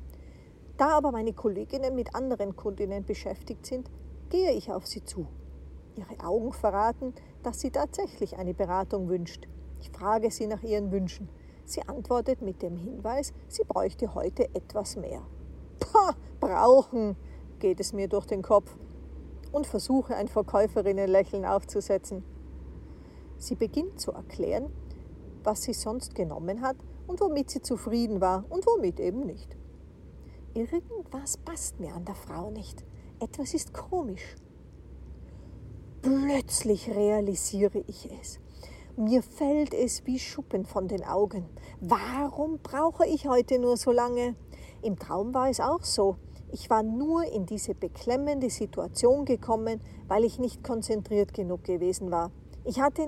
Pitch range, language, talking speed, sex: 195-265 Hz, German, 140 wpm, female